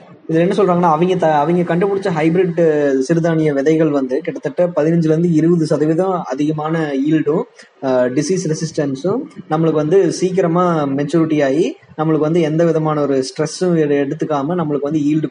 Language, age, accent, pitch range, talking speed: Tamil, 20-39, native, 145-170 Hz, 110 wpm